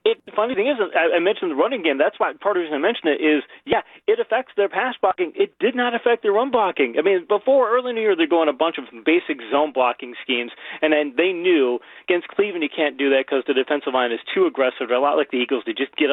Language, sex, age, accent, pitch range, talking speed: English, male, 30-49, American, 135-175 Hz, 280 wpm